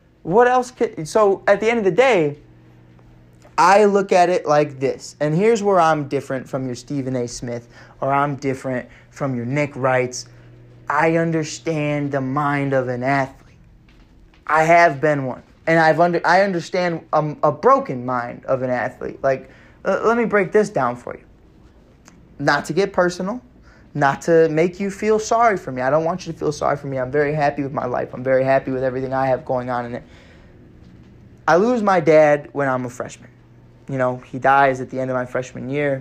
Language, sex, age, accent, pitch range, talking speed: English, male, 20-39, American, 130-165 Hz, 205 wpm